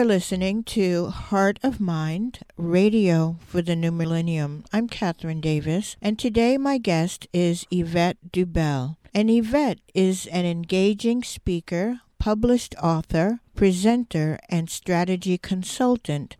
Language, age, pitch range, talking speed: English, 50-69, 170-215 Hz, 115 wpm